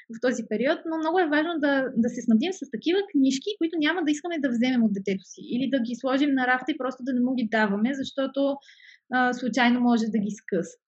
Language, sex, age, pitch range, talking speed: Bulgarian, female, 20-39, 210-275 Hz, 235 wpm